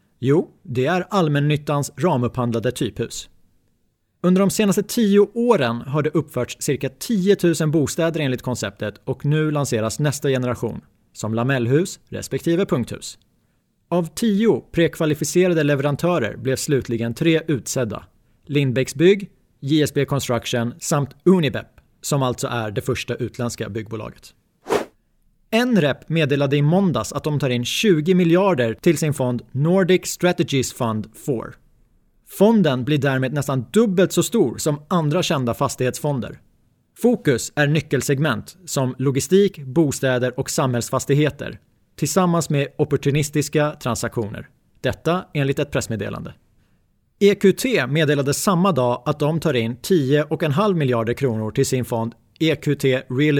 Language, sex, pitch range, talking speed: Swedish, male, 125-165 Hz, 125 wpm